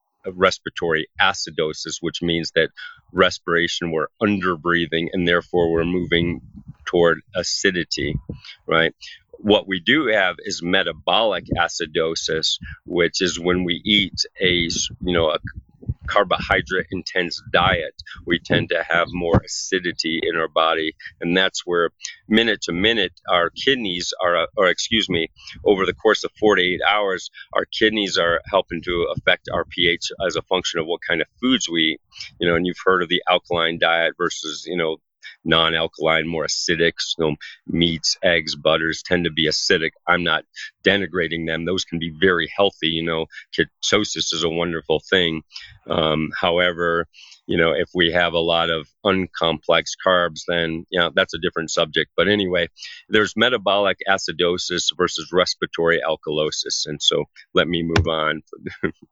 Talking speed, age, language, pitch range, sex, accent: 155 wpm, 40-59, English, 80-90 Hz, male, American